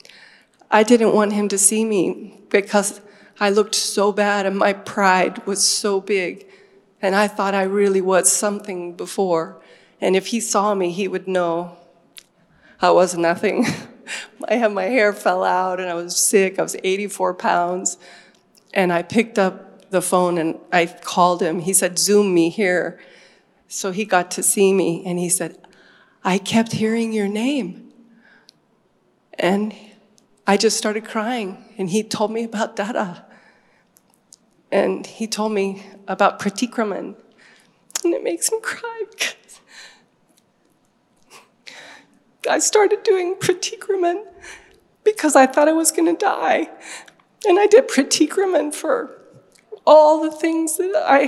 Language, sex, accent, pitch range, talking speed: Gujarati, female, American, 190-310 Hz, 145 wpm